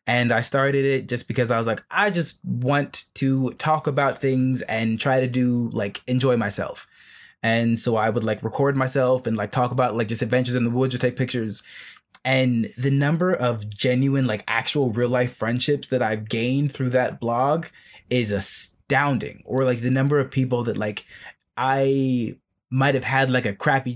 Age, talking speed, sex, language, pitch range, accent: 20-39, 190 wpm, male, English, 120-145 Hz, American